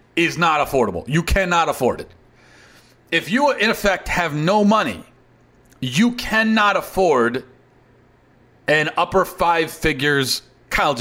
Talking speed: 120 wpm